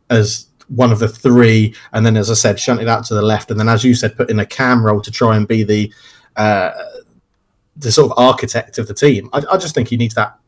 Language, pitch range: English, 110-125 Hz